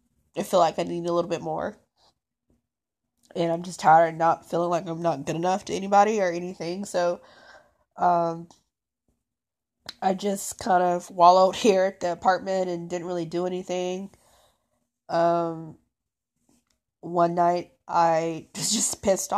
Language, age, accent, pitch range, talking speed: English, 20-39, American, 170-200 Hz, 145 wpm